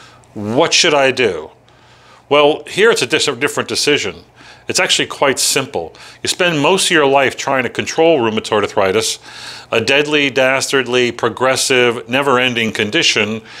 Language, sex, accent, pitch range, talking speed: English, male, American, 120-150 Hz, 135 wpm